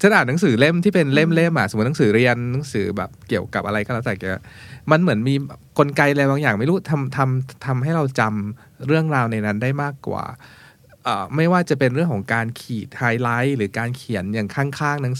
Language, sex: Thai, male